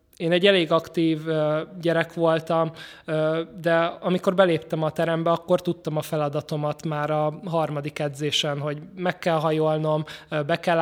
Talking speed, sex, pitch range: 140 wpm, male, 155-170 Hz